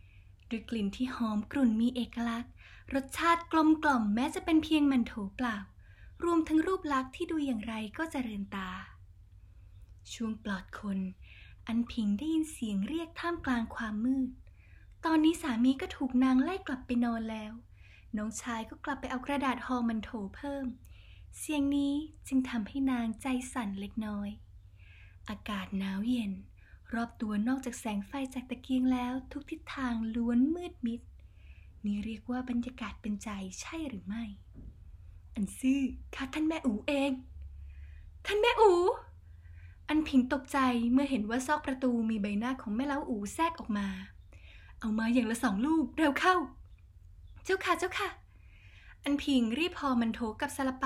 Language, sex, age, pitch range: Thai, female, 20-39, 205-275 Hz